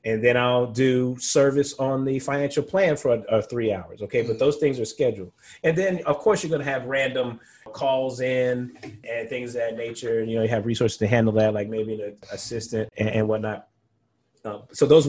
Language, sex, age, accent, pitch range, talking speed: English, male, 30-49, American, 115-155 Hz, 215 wpm